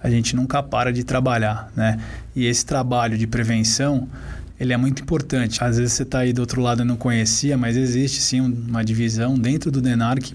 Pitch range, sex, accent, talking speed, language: 115-130 Hz, male, Brazilian, 205 wpm, Portuguese